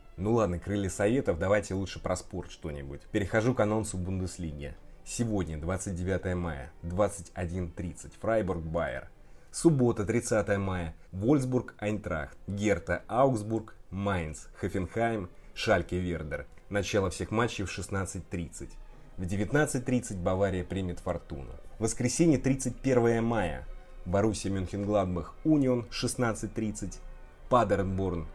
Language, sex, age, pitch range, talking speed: Russian, male, 30-49, 85-110 Hz, 100 wpm